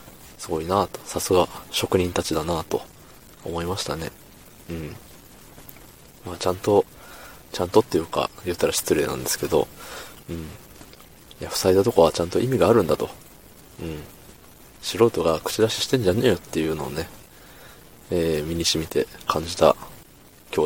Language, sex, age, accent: Japanese, male, 20-39, native